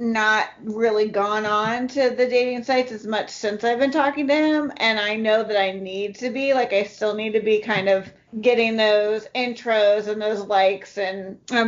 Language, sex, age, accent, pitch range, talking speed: English, female, 40-59, American, 200-245 Hz, 205 wpm